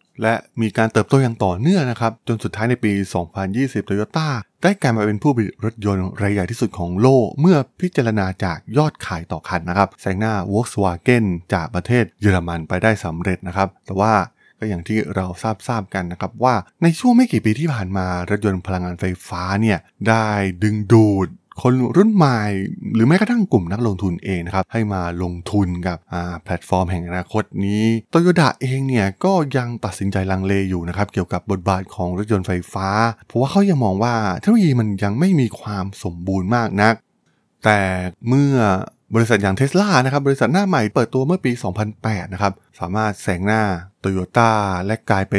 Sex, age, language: male, 20-39, Thai